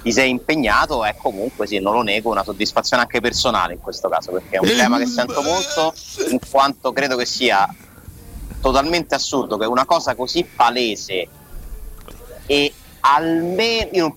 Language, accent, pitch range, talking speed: Italian, native, 110-160 Hz, 165 wpm